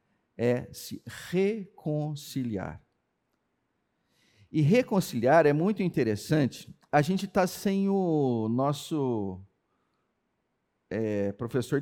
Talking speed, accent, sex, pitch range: 75 wpm, Brazilian, male, 125-165 Hz